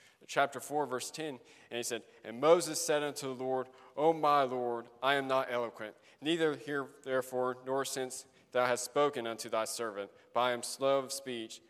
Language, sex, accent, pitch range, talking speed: English, male, American, 120-150 Hz, 190 wpm